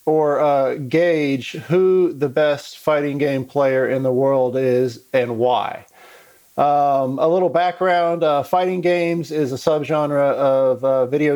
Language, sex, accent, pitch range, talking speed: English, male, American, 130-155 Hz, 150 wpm